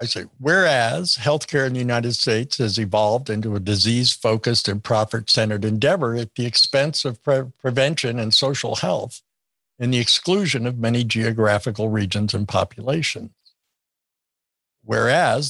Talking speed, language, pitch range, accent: 130 wpm, English, 110-145 Hz, American